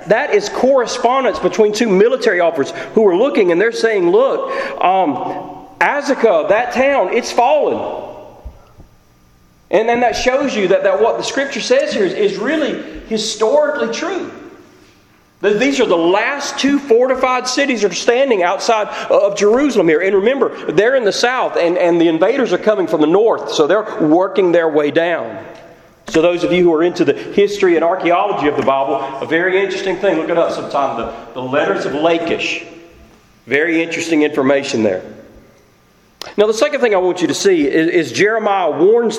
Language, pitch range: English, 165-275 Hz